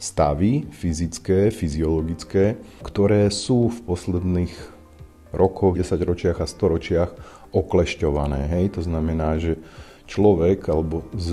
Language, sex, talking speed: Slovak, male, 100 wpm